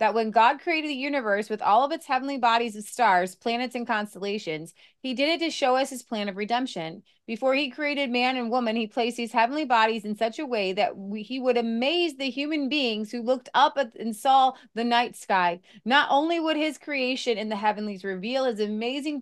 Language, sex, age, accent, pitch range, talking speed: English, female, 30-49, American, 205-265 Hz, 220 wpm